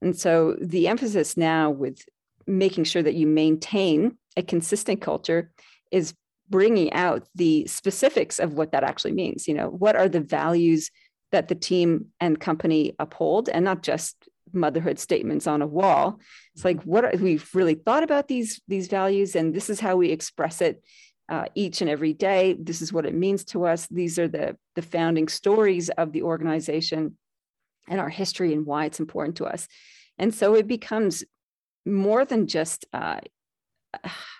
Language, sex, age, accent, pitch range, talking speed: English, female, 40-59, American, 160-195 Hz, 175 wpm